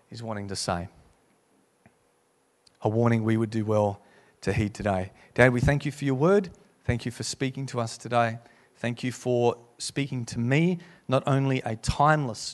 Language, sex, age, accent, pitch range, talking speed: English, male, 30-49, Australian, 115-150 Hz, 175 wpm